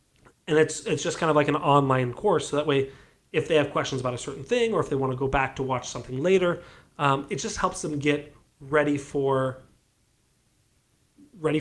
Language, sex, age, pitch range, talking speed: English, male, 30-49, 135-155 Hz, 210 wpm